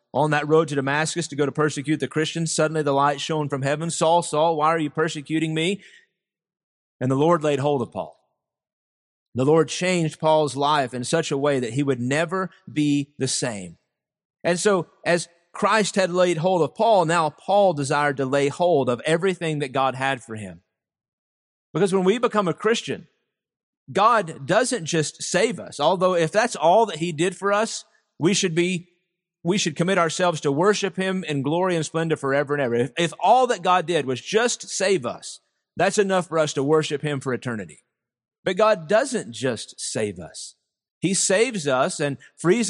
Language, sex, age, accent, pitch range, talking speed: English, male, 30-49, American, 145-190 Hz, 190 wpm